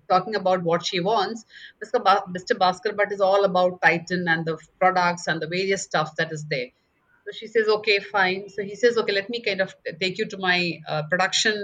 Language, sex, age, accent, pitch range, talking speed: English, female, 30-49, Indian, 170-205 Hz, 210 wpm